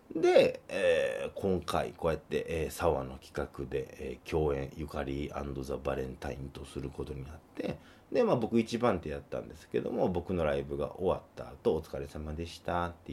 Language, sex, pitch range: Japanese, male, 75-125 Hz